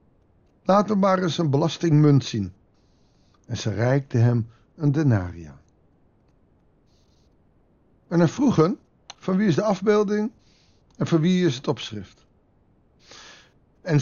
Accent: Dutch